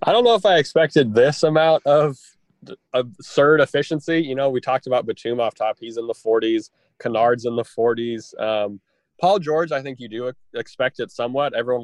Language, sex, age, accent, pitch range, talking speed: English, male, 20-39, American, 110-145 Hz, 195 wpm